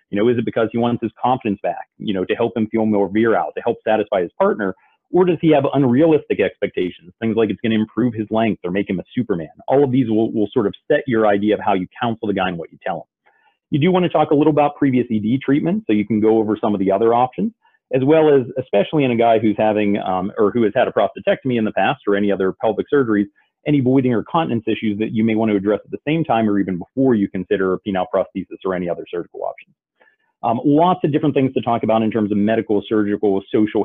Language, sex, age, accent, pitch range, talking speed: English, male, 40-59, American, 105-140 Hz, 270 wpm